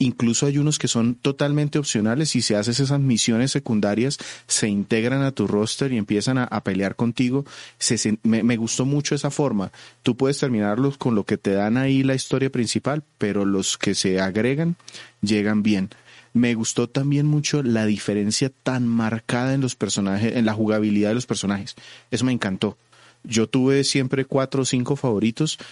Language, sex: Spanish, male